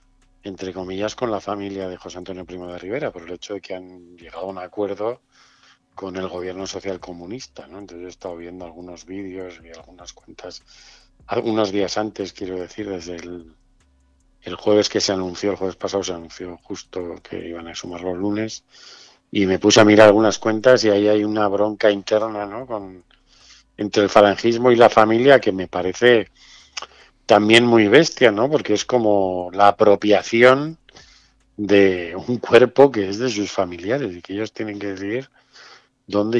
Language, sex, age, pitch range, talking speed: Spanish, male, 50-69, 90-110 Hz, 180 wpm